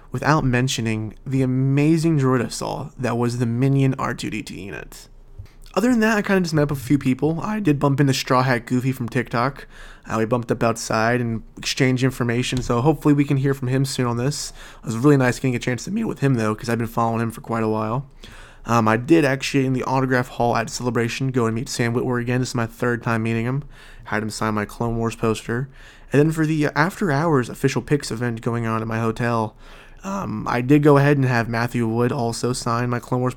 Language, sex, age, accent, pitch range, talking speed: English, male, 20-39, American, 115-140 Hz, 235 wpm